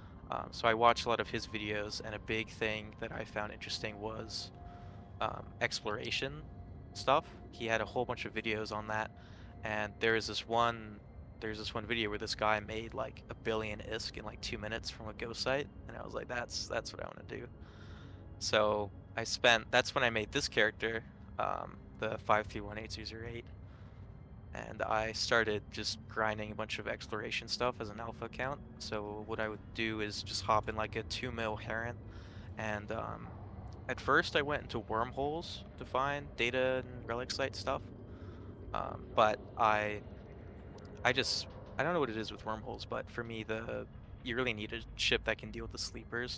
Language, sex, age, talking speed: English, male, 20-39, 200 wpm